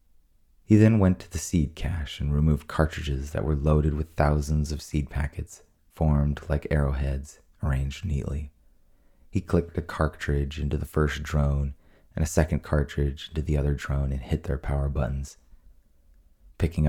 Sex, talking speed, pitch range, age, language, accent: male, 160 wpm, 70-80 Hz, 30-49, English, American